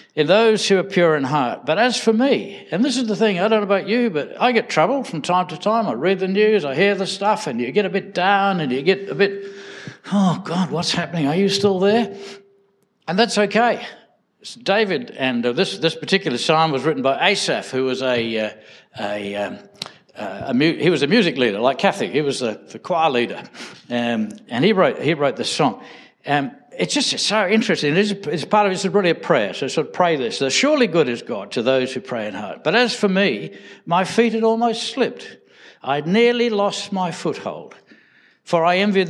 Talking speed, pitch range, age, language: 225 wpm, 150-210 Hz, 60-79, English